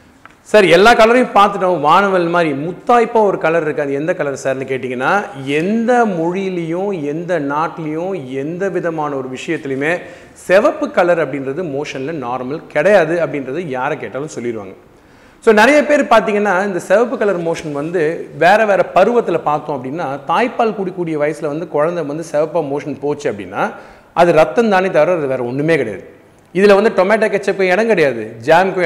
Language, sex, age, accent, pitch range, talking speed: Tamil, male, 30-49, native, 145-200 Hz, 150 wpm